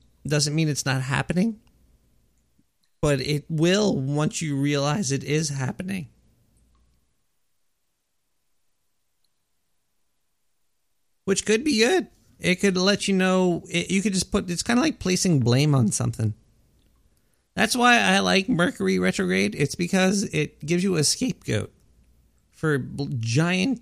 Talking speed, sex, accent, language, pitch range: 125 wpm, male, American, English, 125-190 Hz